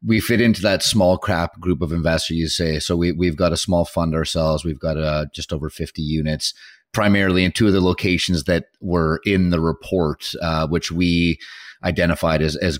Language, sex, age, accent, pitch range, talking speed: English, male, 30-49, American, 80-95 Hz, 200 wpm